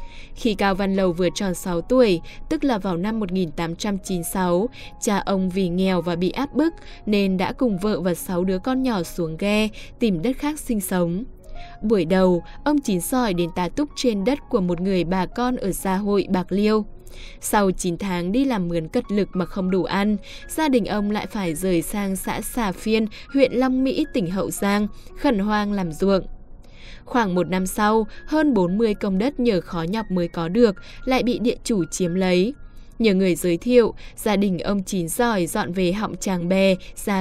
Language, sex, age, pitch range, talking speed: Vietnamese, female, 10-29, 180-235 Hz, 200 wpm